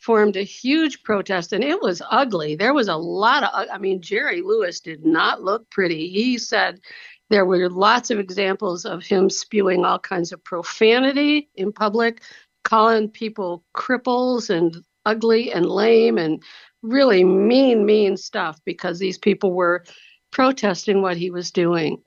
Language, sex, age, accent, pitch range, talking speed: English, female, 50-69, American, 185-240 Hz, 160 wpm